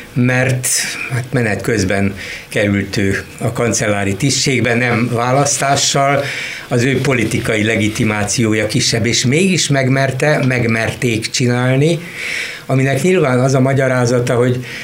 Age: 60-79